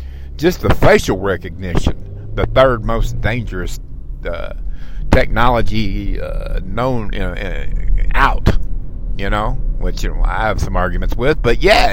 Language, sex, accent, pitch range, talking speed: English, male, American, 95-120 Hz, 135 wpm